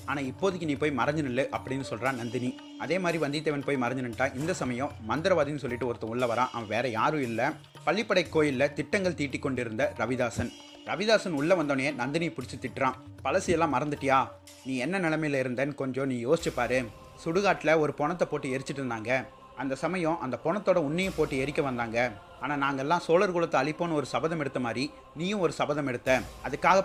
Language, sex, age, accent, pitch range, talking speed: Tamil, male, 30-49, native, 130-165 Hz, 160 wpm